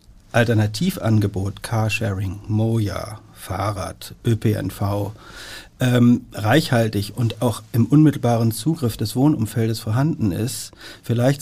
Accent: German